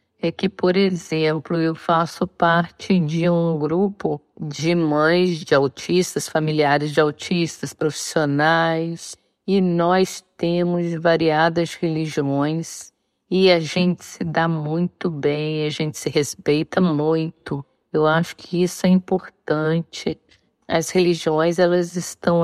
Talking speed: 120 wpm